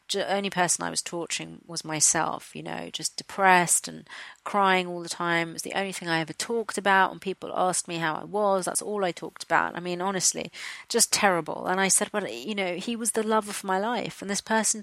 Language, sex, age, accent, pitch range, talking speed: English, female, 30-49, British, 165-195 Hz, 240 wpm